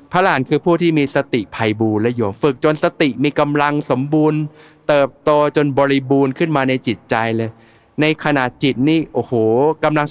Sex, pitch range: male, 125-155 Hz